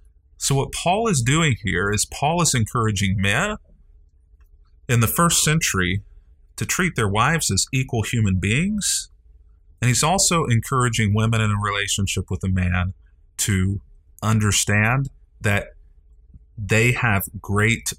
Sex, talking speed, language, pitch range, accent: male, 135 wpm, English, 85-115 Hz, American